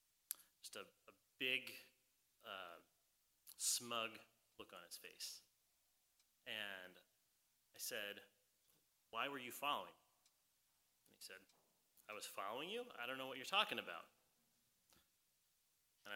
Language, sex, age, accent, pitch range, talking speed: English, male, 30-49, American, 110-130 Hz, 120 wpm